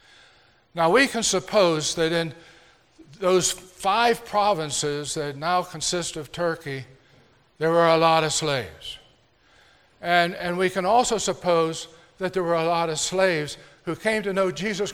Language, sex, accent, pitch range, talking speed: English, male, American, 165-200 Hz, 155 wpm